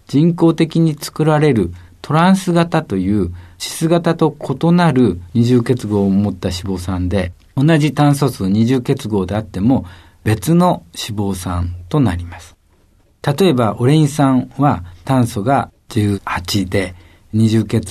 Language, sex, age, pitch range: Japanese, male, 50-69, 95-145 Hz